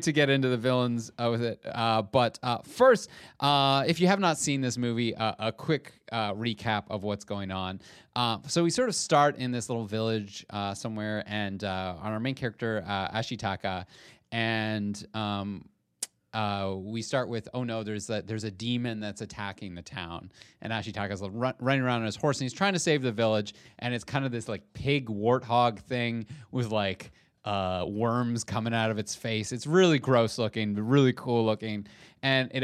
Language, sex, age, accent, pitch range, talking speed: English, male, 30-49, American, 100-125 Hz, 195 wpm